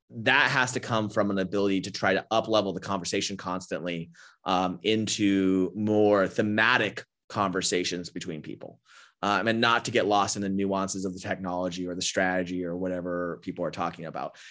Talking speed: 180 wpm